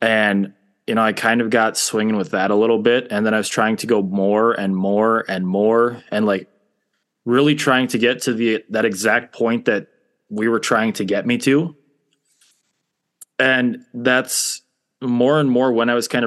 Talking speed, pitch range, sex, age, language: 195 wpm, 110-130 Hz, male, 20-39, English